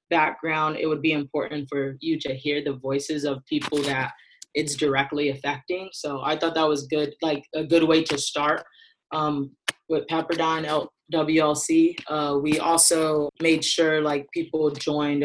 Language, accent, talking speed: English, American, 160 wpm